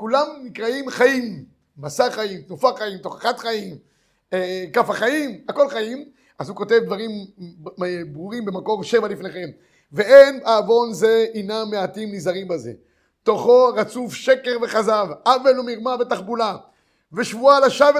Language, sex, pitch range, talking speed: Hebrew, male, 205-260 Hz, 125 wpm